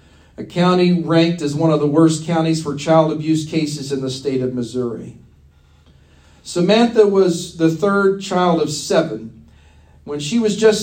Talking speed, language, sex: 160 wpm, English, male